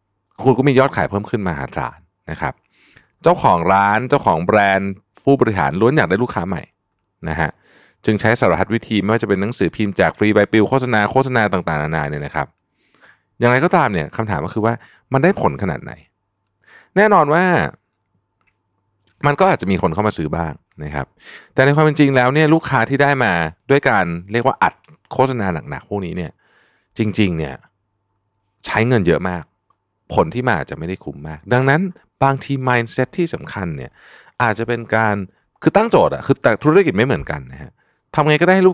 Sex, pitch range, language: male, 90-130 Hz, Thai